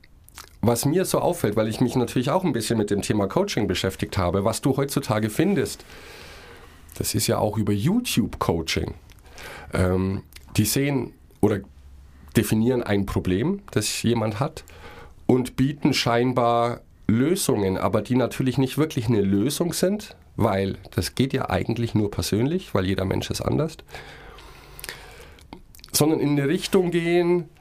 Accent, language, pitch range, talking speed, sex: German, German, 95-130 Hz, 145 wpm, male